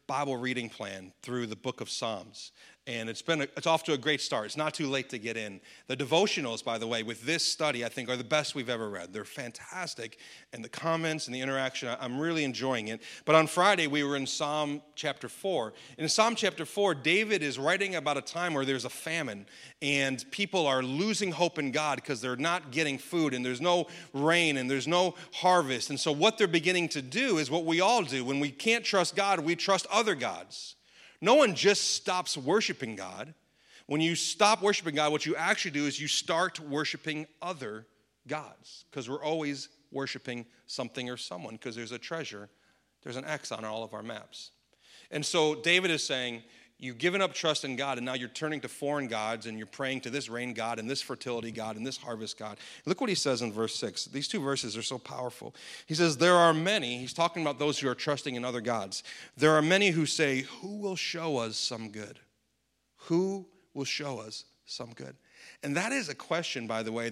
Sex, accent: male, American